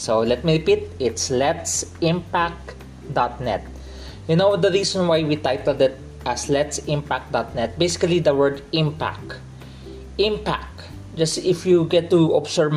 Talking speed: 125 wpm